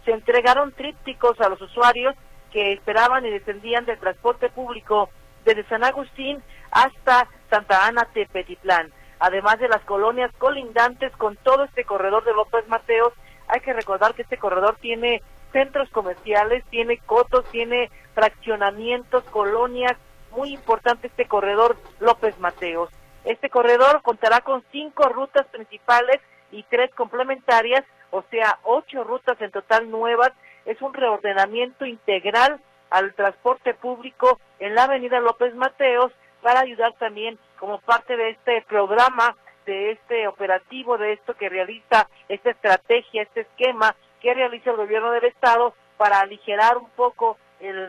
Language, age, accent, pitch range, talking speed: Spanish, 40-59, Mexican, 210-245 Hz, 140 wpm